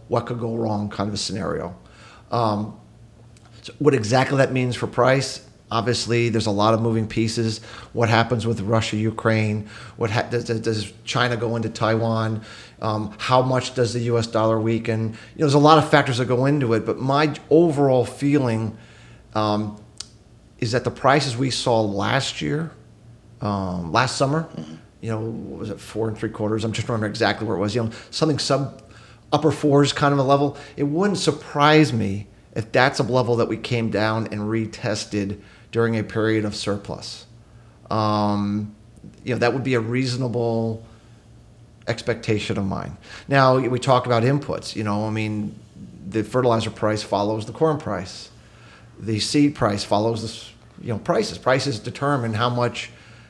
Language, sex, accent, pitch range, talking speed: English, male, American, 110-125 Hz, 175 wpm